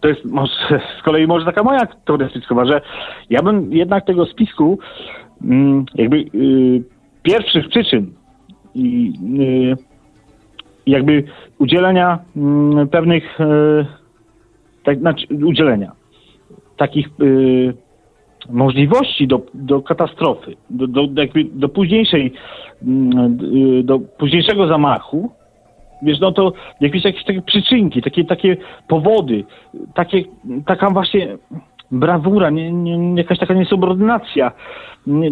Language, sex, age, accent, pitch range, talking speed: Polish, male, 40-59, native, 140-200 Hz, 90 wpm